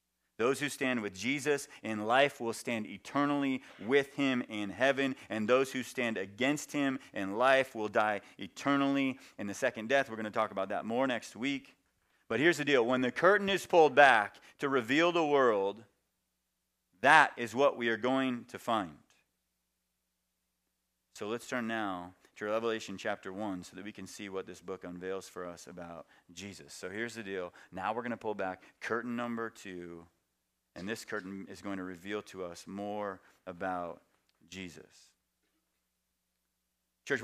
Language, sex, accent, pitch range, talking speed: English, male, American, 95-135 Hz, 170 wpm